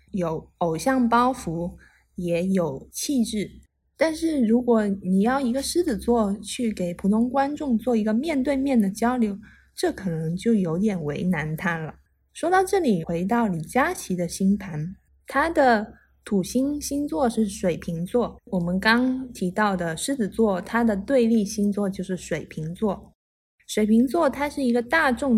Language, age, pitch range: Chinese, 20-39, 185-255 Hz